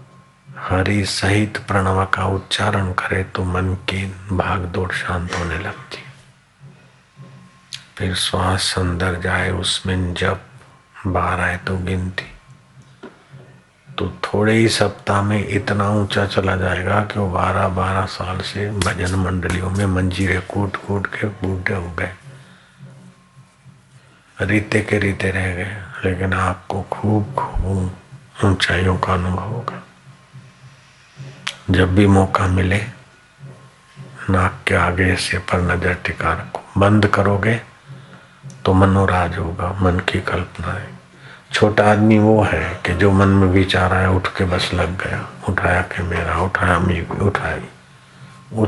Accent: native